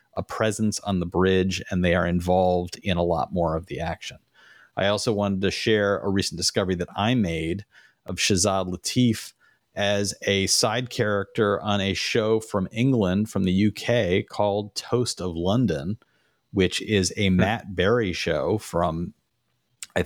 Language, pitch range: English, 90-110 Hz